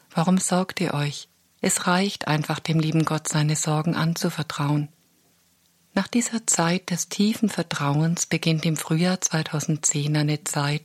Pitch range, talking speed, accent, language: 150-175 Hz, 140 wpm, German, German